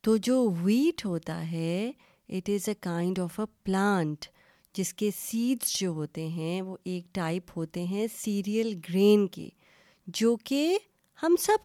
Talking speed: 155 wpm